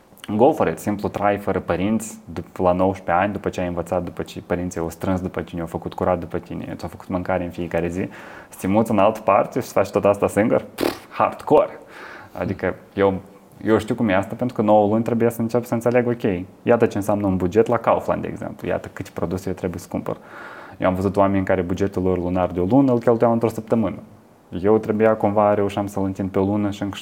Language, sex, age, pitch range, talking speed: Romanian, male, 20-39, 90-110 Hz, 215 wpm